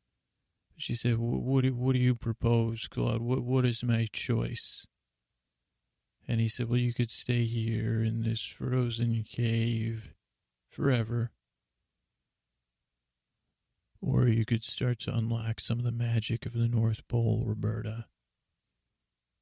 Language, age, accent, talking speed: English, 40-59, American, 120 wpm